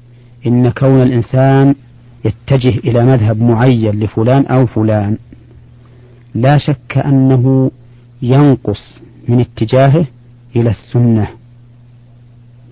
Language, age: Arabic, 50-69